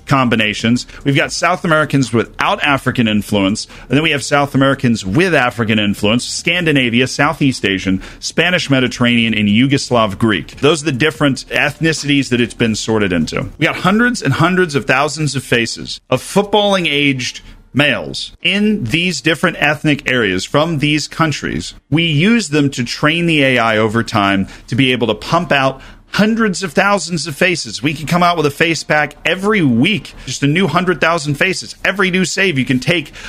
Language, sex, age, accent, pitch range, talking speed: English, male, 40-59, American, 120-155 Hz, 175 wpm